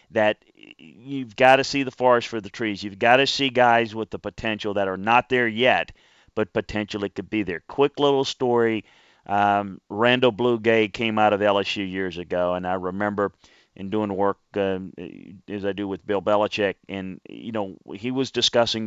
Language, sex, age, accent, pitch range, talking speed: English, male, 40-59, American, 100-120 Hz, 190 wpm